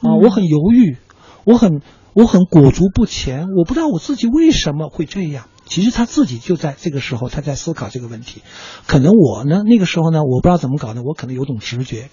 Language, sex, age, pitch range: Chinese, male, 50-69, 125-195 Hz